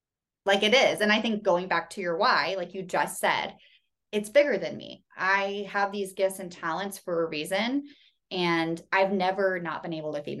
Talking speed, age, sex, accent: 210 wpm, 20-39, female, American